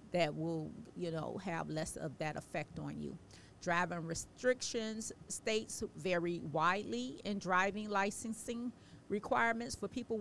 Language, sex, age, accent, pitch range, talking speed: English, female, 40-59, American, 160-195 Hz, 130 wpm